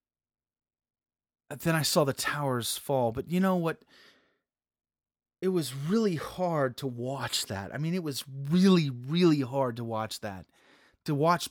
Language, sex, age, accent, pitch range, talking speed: English, male, 30-49, American, 135-190 Hz, 150 wpm